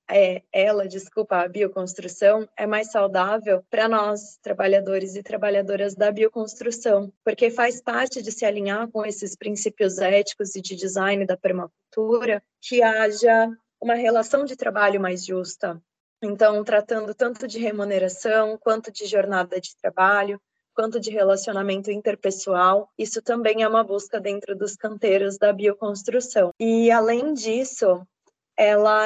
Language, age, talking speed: Portuguese, 20-39, 135 wpm